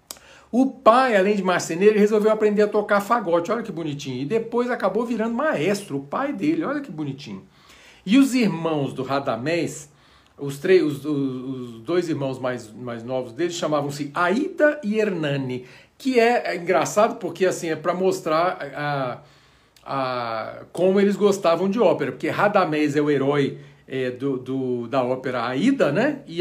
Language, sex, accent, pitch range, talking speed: Portuguese, male, Brazilian, 140-215 Hz, 155 wpm